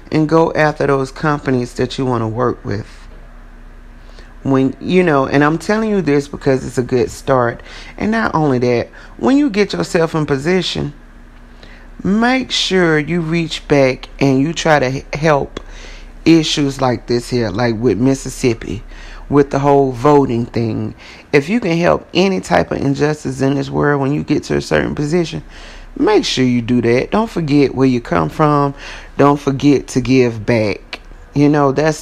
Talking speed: 175 wpm